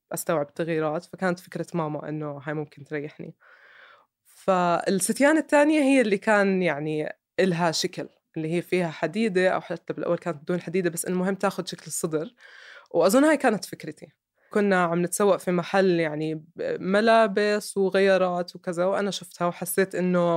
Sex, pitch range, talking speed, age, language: female, 160-195 Hz, 145 wpm, 20-39, Arabic